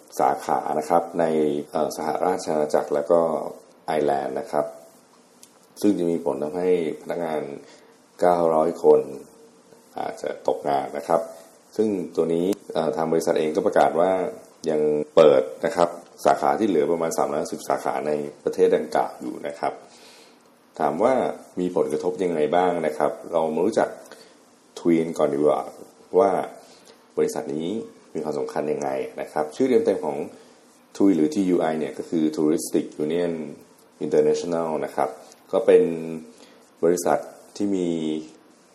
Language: Thai